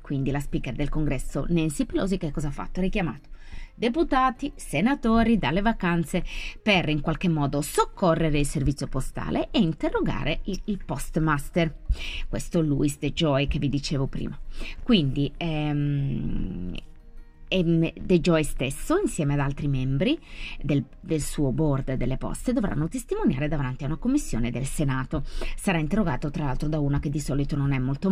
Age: 30-49